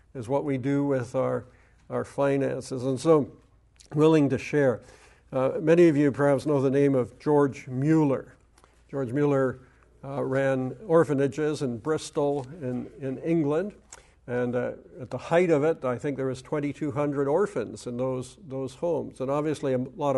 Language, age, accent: English, 60-79, American